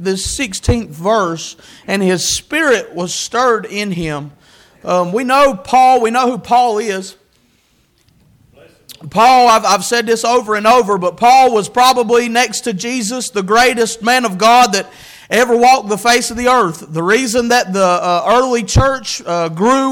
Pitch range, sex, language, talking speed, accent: 225-285 Hz, male, English, 170 wpm, American